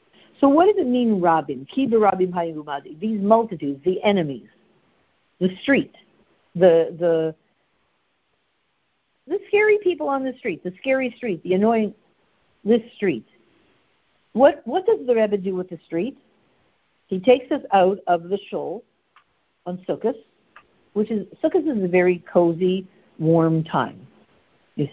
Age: 60-79